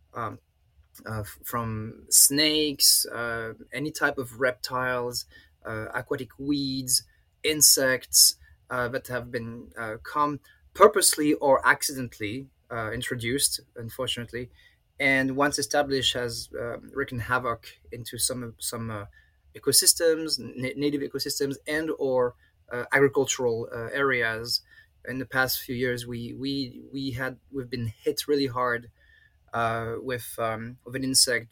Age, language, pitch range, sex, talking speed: 20-39, English, 115-140 Hz, male, 125 wpm